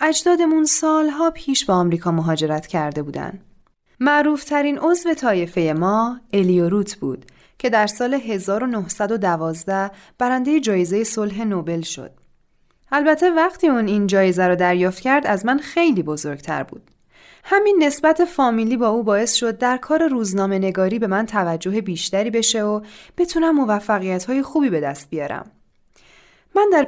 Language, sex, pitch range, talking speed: Persian, female, 190-275 Hz, 135 wpm